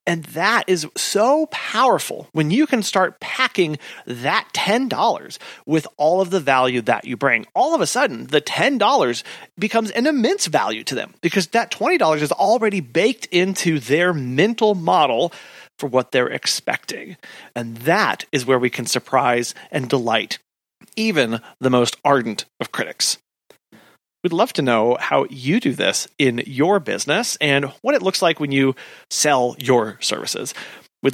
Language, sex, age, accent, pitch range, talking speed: English, male, 30-49, American, 130-195 Hz, 160 wpm